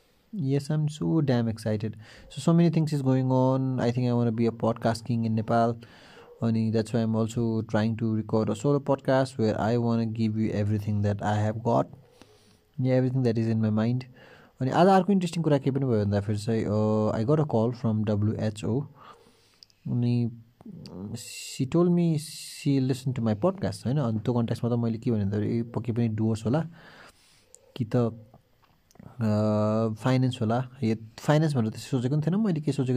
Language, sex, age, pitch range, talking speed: English, male, 30-49, 110-130 Hz, 135 wpm